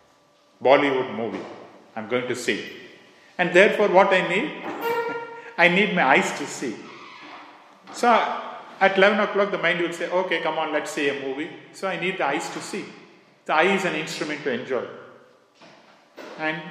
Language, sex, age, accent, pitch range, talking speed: English, male, 40-59, Indian, 150-195 Hz, 170 wpm